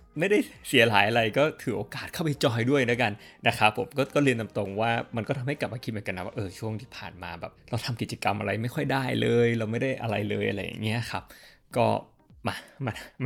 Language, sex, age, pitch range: Thai, male, 20-39, 105-130 Hz